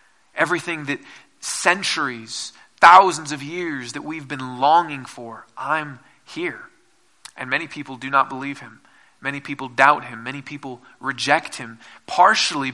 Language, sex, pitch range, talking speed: English, male, 130-175 Hz, 135 wpm